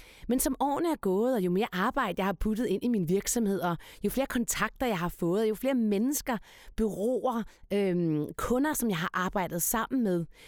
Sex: female